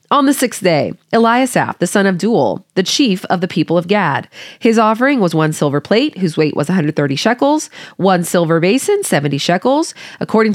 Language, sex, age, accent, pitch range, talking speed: English, female, 20-39, American, 165-240 Hz, 190 wpm